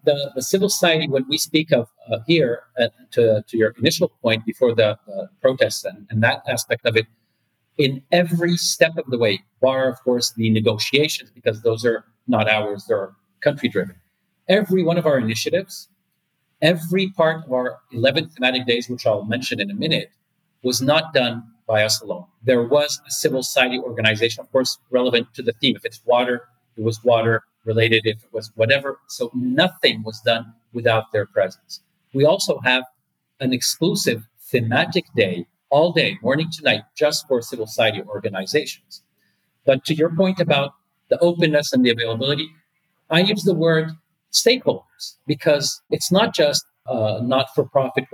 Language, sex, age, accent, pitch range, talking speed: English, male, 40-59, Canadian, 115-165 Hz, 170 wpm